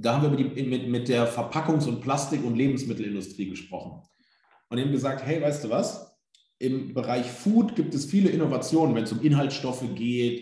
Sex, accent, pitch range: male, German, 110-140 Hz